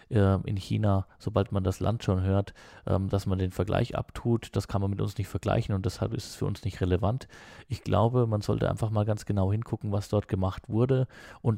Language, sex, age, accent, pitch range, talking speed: German, male, 20-39, German, 95-110 Hz, 220 wpm